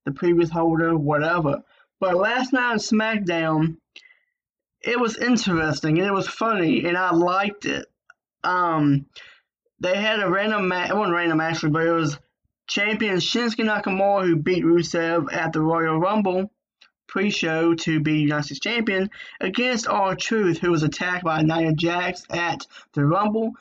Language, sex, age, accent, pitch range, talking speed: English, male, 20-39, American, 165-210 Hz, 155 wpm